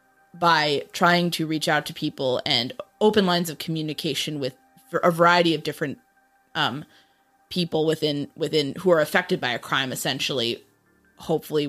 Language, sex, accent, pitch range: English, female, American, 145-175 Hz